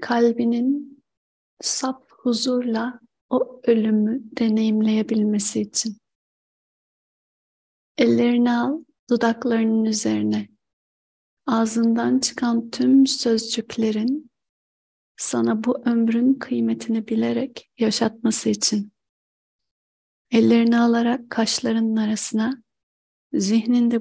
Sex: female